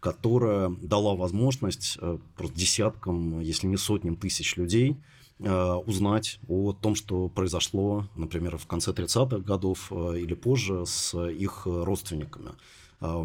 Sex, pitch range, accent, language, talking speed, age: male, 90-105 Hz, native, Russian, 115 wpm, 30-49